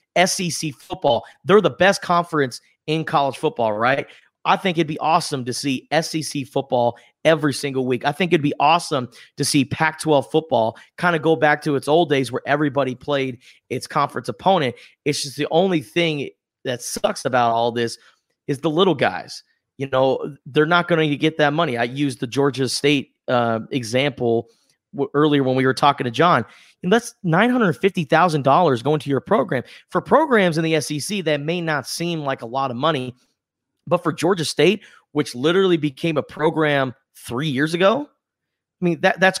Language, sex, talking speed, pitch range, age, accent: English, male, 190 wpm, 130-165 Hz, 30-49, American